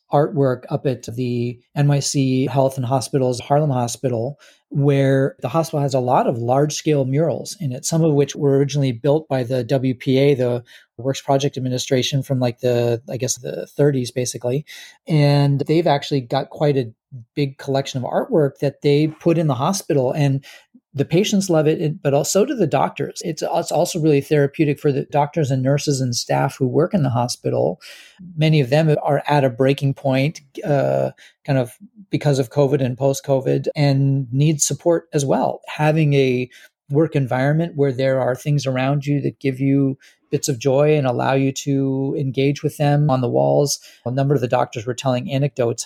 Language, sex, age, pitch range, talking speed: English, male, 30-49, 130-150 Hz, 185 wpm